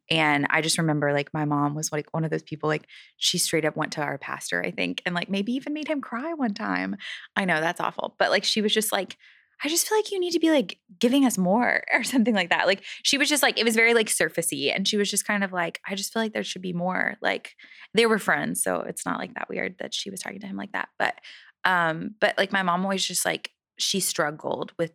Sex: female